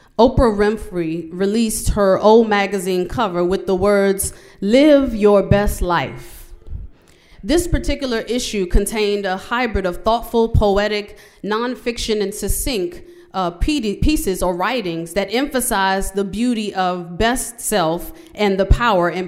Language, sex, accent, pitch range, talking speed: English, female, American, 190-245 Hz, 130 wpm